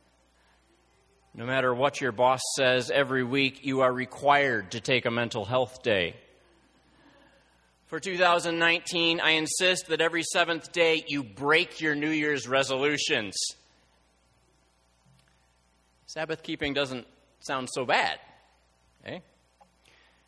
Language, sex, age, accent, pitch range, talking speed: English, male, 30-49, American, 100-145 Hz, 110 wpm